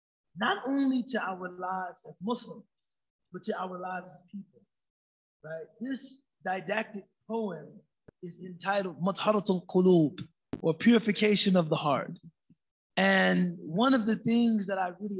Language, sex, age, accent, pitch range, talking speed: English, male, 20-39, American, 185-230 Hz, 135 wpm